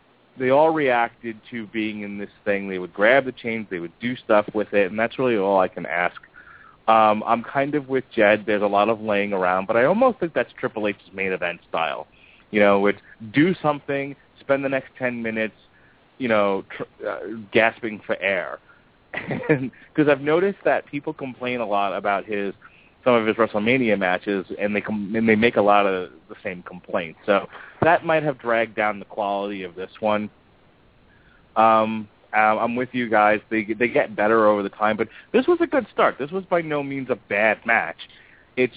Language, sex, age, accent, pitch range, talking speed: English, male, 30-49, American, 105-140 Hz, 195 wpm